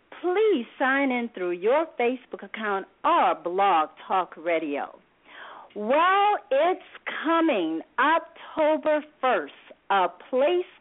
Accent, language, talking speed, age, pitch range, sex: American, English, 100 wpm, 50-69, 220-340 Hz, female